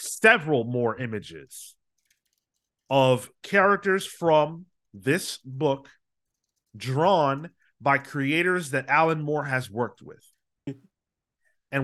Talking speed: 90 wpm